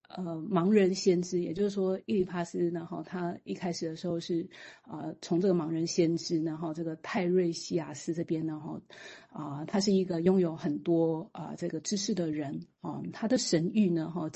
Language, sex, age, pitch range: Chinese, female, 30-49, 165-195 Hz